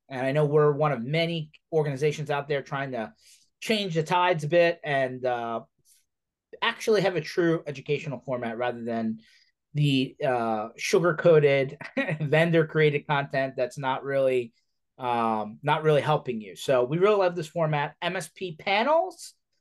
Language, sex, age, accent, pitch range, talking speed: English, male, 30-49, American, 135-175 Hz, 145 wpm